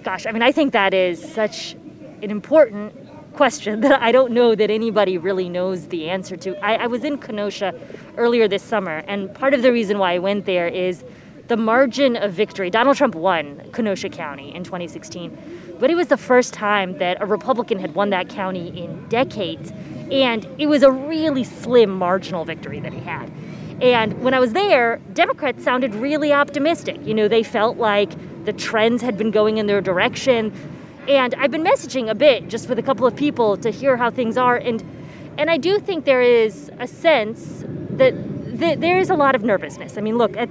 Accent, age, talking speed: American, 20-39, 205 wpm